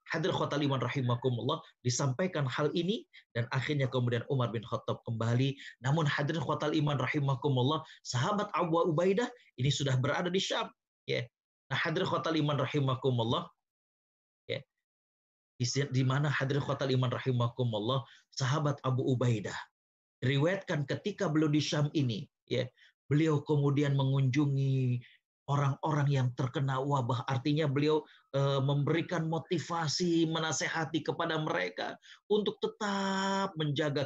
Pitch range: 130-165 Hz